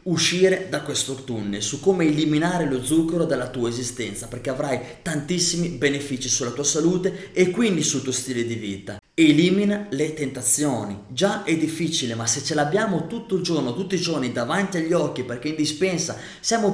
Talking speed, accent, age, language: 175 wpm, native, 20-39, Italian